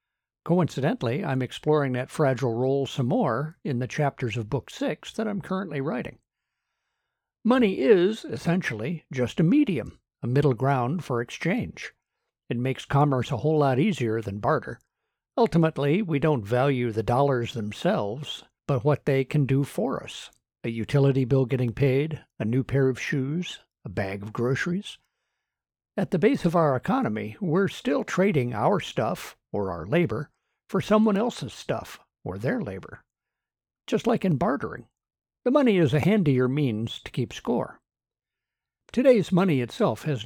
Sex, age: male, 60-79